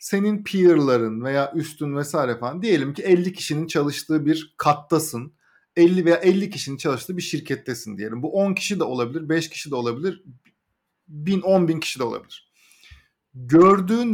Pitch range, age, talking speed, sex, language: 140-185 Hz, 50-69, 155 wpm, male, Turkish